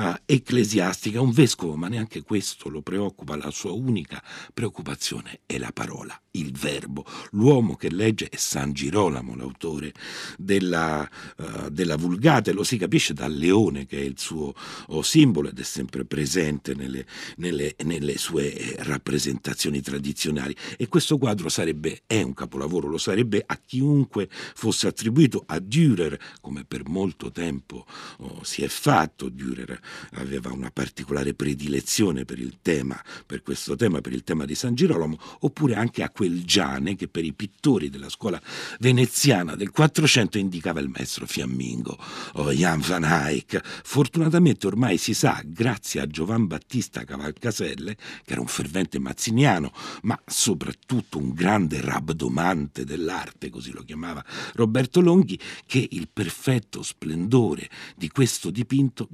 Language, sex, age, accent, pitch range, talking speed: Italian, male, 60-79, native, 70-115 Hz, 145 wpm